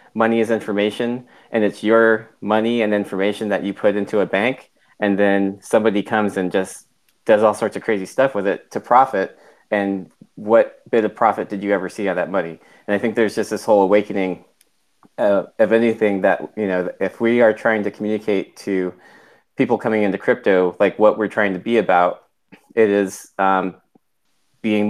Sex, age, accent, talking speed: male, 20-39, American, 190 wpm